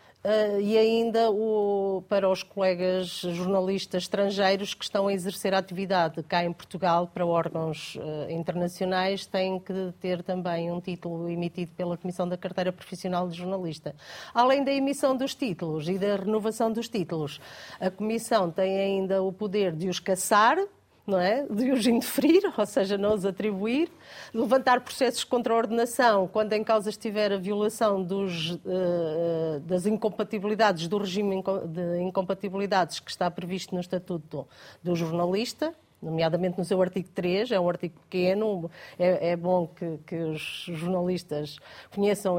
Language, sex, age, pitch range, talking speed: Portuguese, female, 40-59, 180-220 Hz, 145 wpm